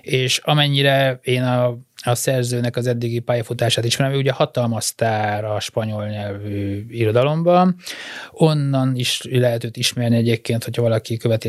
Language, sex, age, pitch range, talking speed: Hungarian, male, 20-39, 115-130 Hz, 135 wpm